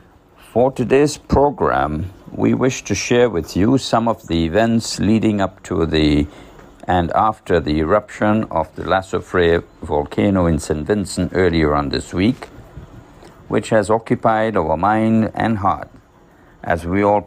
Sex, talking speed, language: male, 145 wpm, English